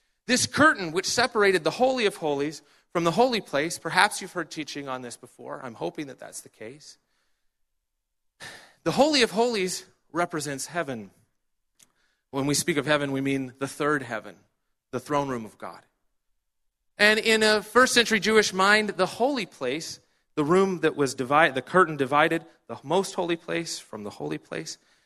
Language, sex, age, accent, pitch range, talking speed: English, male, 30-49, American, 130-195 Hz, 170 wpm